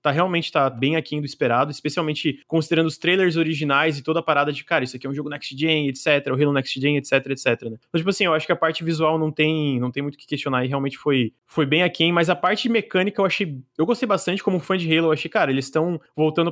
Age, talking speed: 20-39, 260 wpm